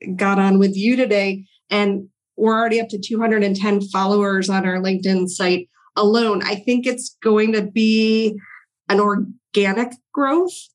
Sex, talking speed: female, 145 wpm